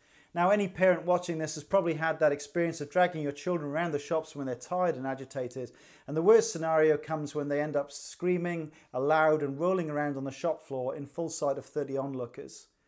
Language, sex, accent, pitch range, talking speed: English, male, British, 140-180 Hz, 215 wpm